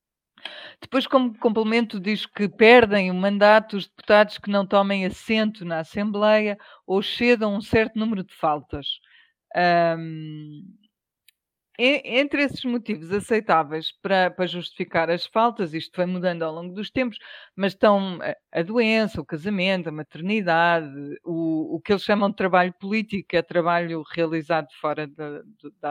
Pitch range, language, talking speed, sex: 170-210 Hz, Portuguese, 145 wpm, female